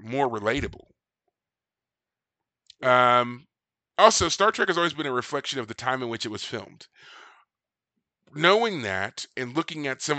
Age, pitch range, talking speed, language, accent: 30-49, 115-140 Hz, 145 wpm, English, American